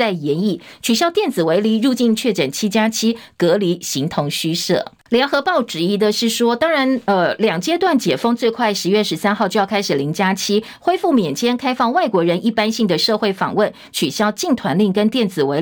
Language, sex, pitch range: Chinese, female, 190-255 Hz